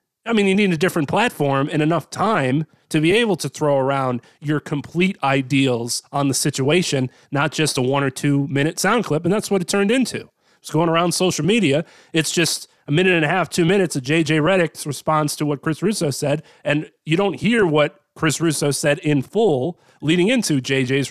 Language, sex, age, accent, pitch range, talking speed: English, male, 30-49, American, 140-180 Hz, 210 wpm